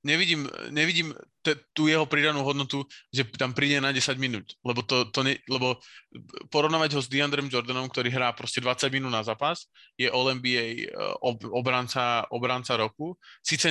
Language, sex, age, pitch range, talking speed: Slovak, male, 20-39, 115-130 Hz, 160 wpm